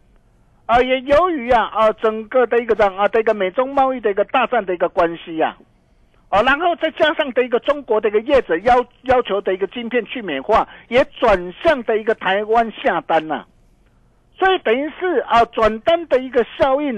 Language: Chinese